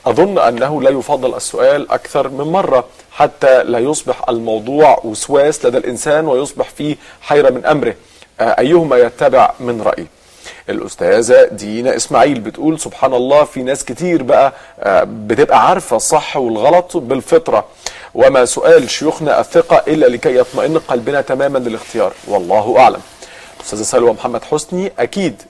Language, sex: Arabic, male